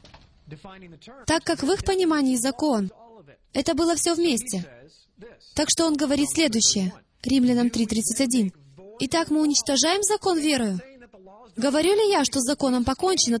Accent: native